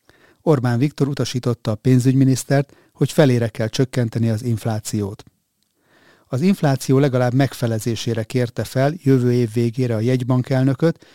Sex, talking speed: male, 120 wpm